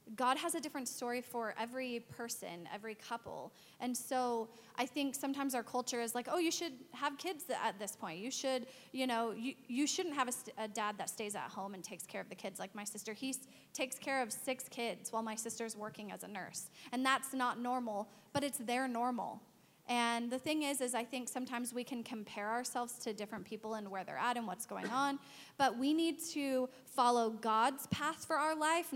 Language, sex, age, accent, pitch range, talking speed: English, female, 20-39, American, 225-265 Hz, 220 wpm